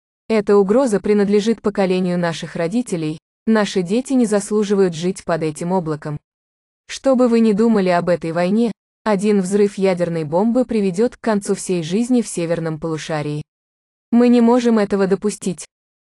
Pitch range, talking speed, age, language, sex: 175-220 Hz, 145 wpm, 20-39, English, female